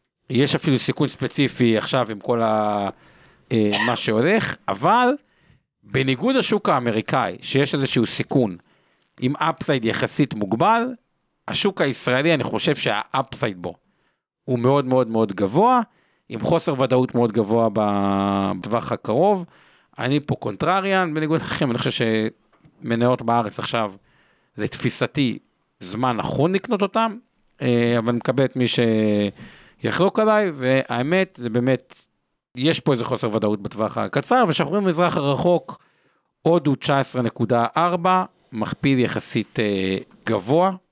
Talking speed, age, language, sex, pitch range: 115 wpm, 50-69, Hebrew, male, 115-175 Hz